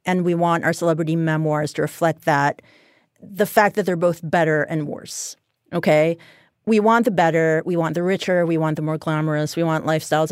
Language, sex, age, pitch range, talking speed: English, female, 30-49, 155-180 Hz, 200 wpm